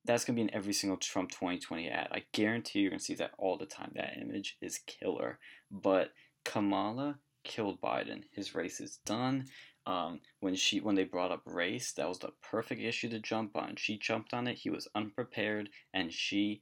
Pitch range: 100-125 Hz